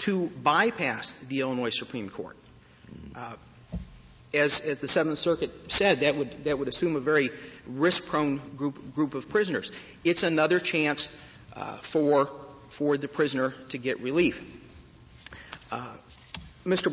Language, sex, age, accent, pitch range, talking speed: English, male, 50-69, American, 135-165 Hz, 135 wpm